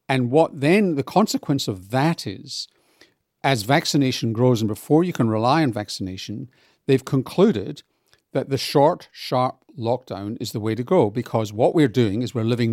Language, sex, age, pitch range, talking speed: English, male, 50-69, 105-135 Hz, 175 wpm